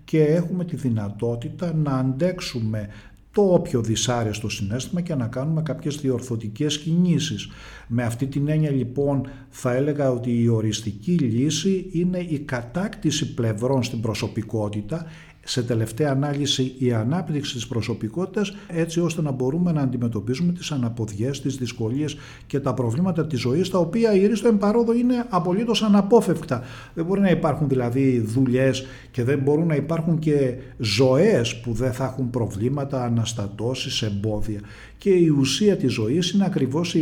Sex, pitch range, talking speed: male, 120-170 Hz, 145 wpm